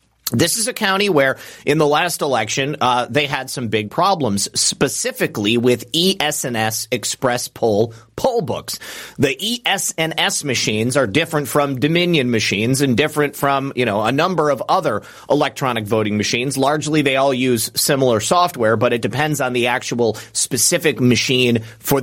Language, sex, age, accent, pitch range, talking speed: English, male, 30-49, American, 120-160 Hz, 155 wpm